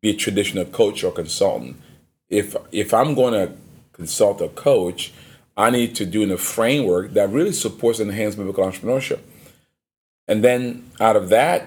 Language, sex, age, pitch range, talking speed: English, male, 30-49, 95-120 Hz, 165 wpm